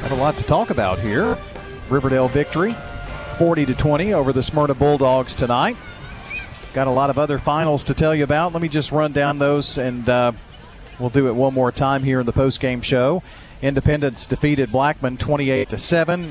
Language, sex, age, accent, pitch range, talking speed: English, male, 40-59, American, 115-145 Hz, 190 wpm